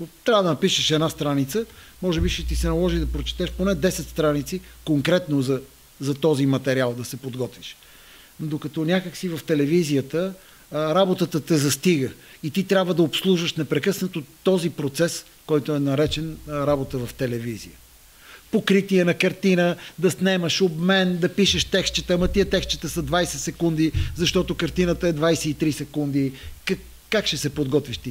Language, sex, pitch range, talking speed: Bulgarian, male, 135-180 Hz, 150 wpm